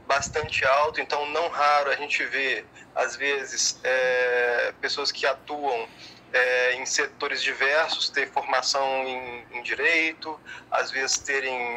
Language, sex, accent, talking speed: Portuguese, male, Brazilian, 135 wpm